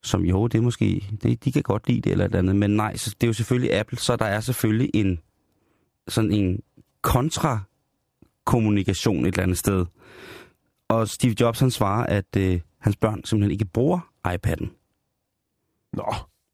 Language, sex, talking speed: Danish, male, 180 wpm